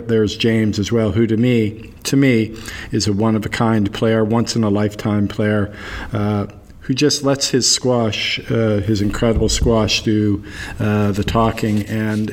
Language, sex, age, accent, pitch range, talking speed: English, male, 50-69, American, 105-115 Hz, 145 wpm